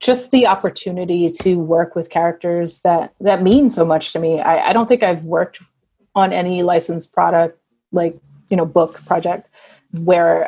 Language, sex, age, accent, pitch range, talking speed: English, female, 30-49, American, 180-250 Hz, 170 wpm